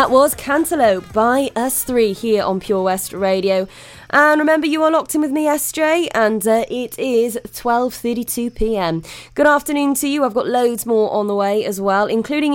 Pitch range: 200-265 Hz